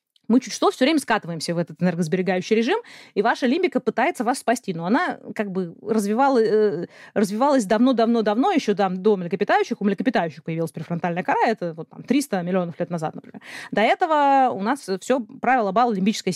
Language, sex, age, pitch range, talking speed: Russian, female, 30-49, 200-260 Hz, 160 wpm